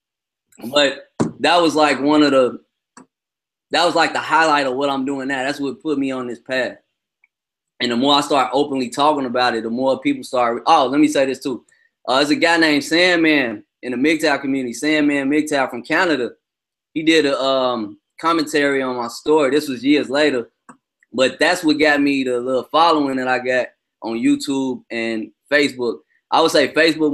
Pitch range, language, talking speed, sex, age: 130-160 Hz, English, 195 wpm, male, 20-39